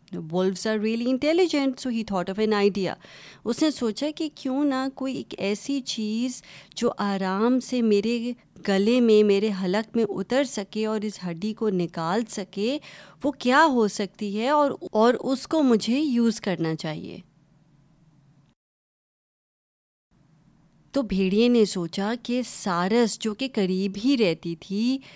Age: 30-49